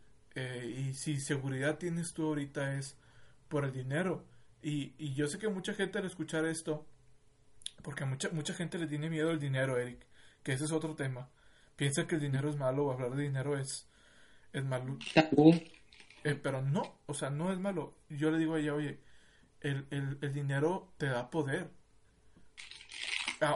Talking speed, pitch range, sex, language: 185 wpm, 135-165 Hz, male, Spanish